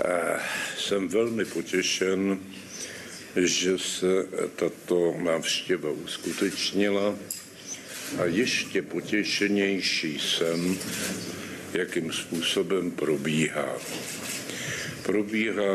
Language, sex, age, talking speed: Czech, male, 70-89, 60 wpm